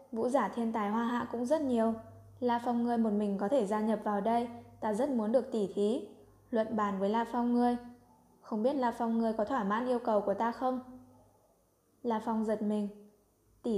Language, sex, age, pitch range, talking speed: Vietnamese, female, 10-29, 210-240 Hz, 220 wpm